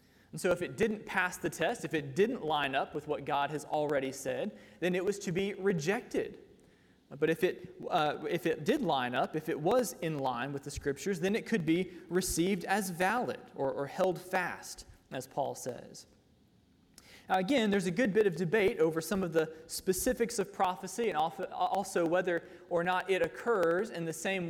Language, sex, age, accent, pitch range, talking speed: English, male, 20-39, American, 160-205 Hz, 200 wpm